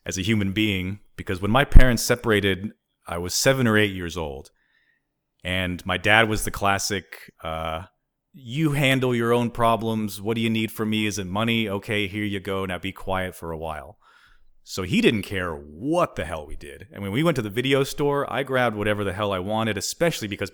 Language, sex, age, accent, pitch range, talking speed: English, male, 30-49, American, 95-115 Hz, 215 wpm